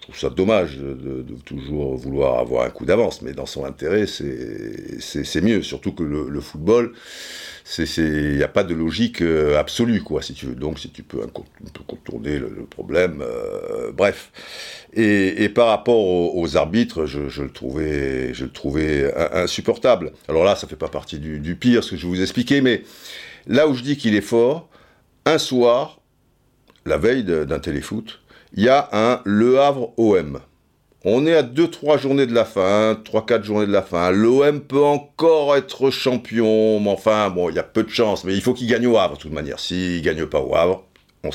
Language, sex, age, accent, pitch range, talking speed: French, male, 60-79, French, 80-125 Hz, 215 wpm